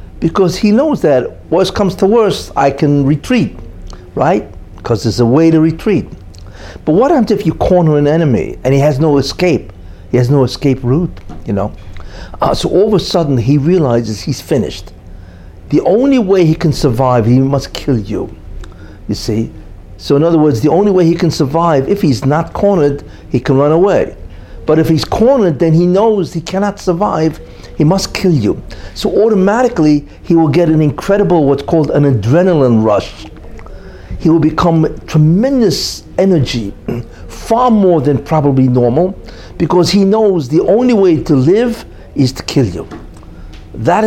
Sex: male